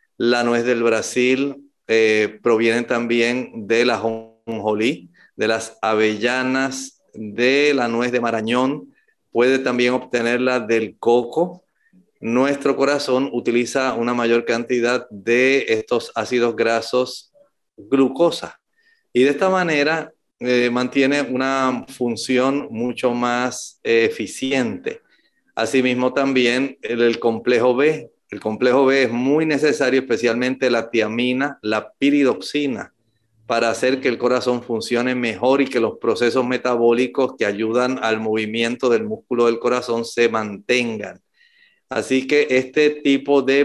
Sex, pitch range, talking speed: male, 115-140 Hz, 125 wpm